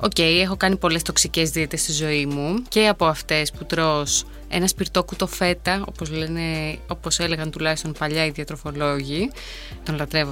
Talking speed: 165 wpm